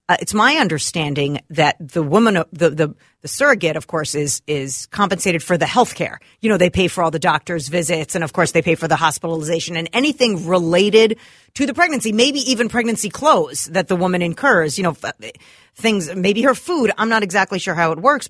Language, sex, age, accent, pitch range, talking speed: English, female, 40-59, American, 155-195 Hz, 210 wpm